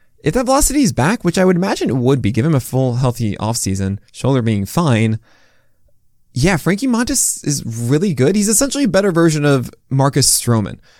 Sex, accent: male, American